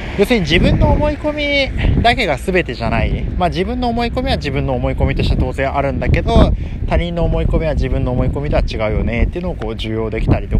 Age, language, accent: 20-39, Japanese, native